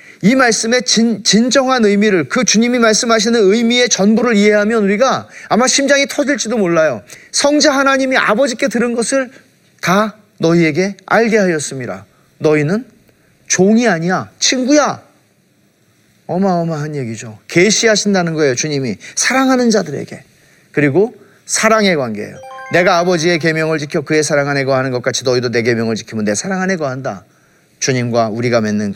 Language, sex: Korean, male